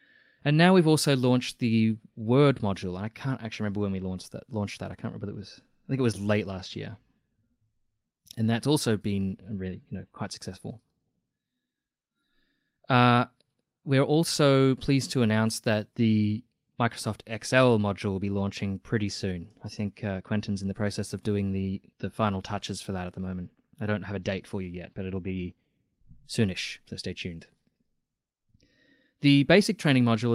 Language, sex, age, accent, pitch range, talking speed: English, male, 20-39, Australian, 105-135 Hz, 185 wpm